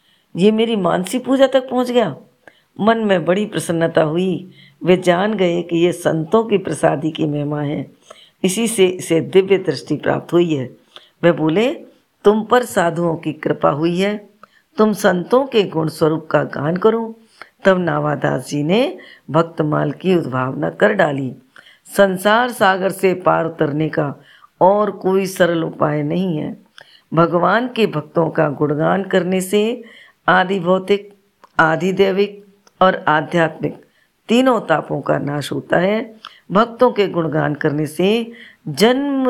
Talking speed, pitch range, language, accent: 140 wpm, 160-205 Hz, Hindi, native